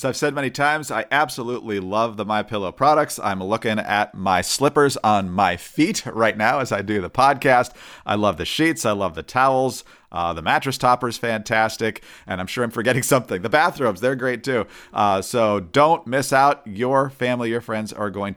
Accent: American